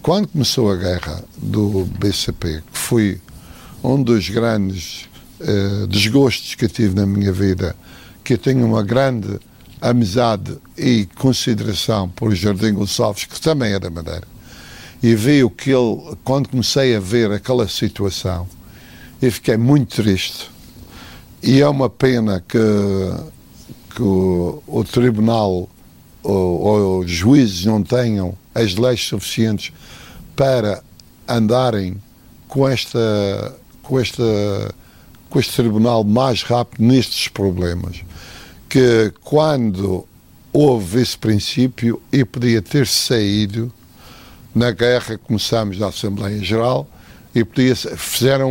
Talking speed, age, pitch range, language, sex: 120 wpm, 60-79, 100-125 Hz, Portuguese, male